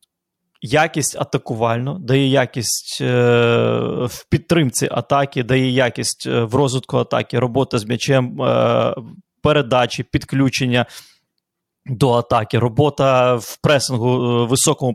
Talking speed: 105 wpm